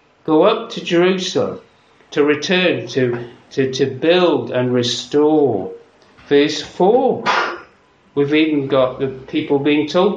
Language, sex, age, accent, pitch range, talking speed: English, male, 60-79, British, 130-165 Hz, 125 wpm